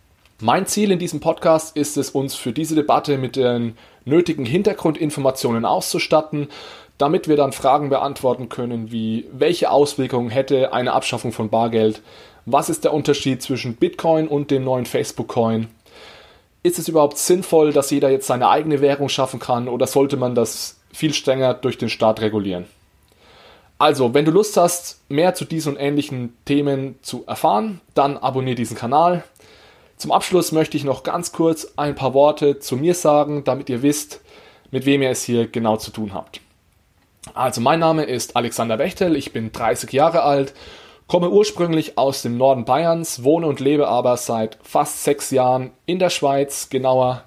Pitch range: 125-150 Hz